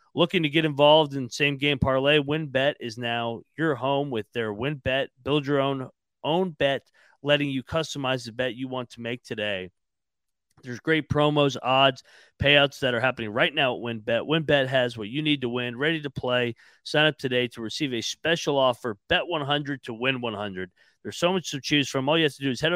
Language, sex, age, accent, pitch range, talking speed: English, male, 40-59, American, 120-150 Hz, 205 wpm